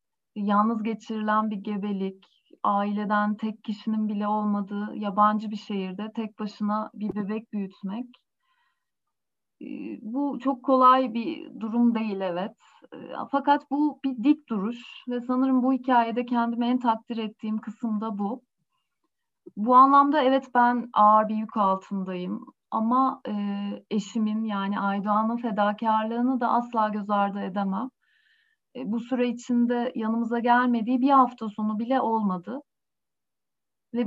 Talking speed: 120 wpm